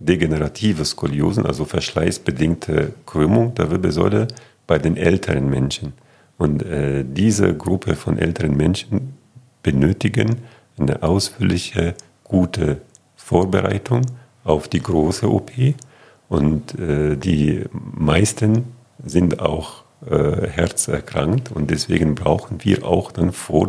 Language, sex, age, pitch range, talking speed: German, male, 50-69, 80-120 Hz, 105 wpm